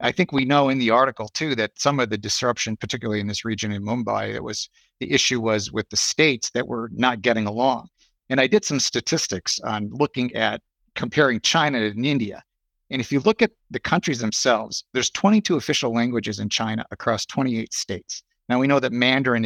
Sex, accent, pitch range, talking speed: male, American, 110-140 Hz, 205 wpm